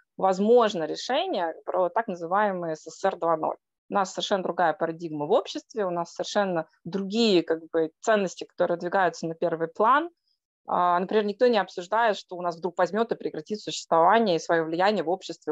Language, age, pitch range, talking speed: Russian, 20-39, 170-225 Hz, 165 wpm